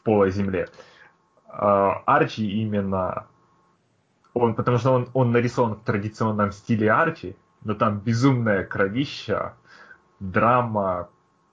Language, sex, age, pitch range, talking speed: Russian, male, 20-39, 105-120 Hz, 110 wpm